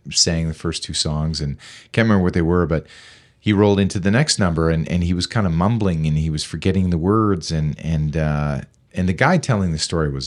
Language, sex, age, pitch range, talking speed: English, male, 40-59, 80-100 Hz, 240 wpm